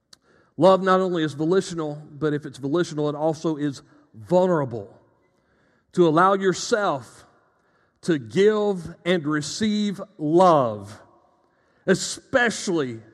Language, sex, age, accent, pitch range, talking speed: English, male, 40-59, American, 155-205 Hz, 100 wpm